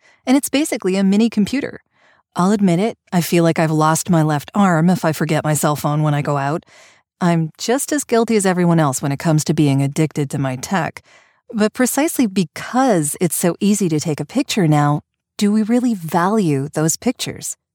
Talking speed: 200 wpm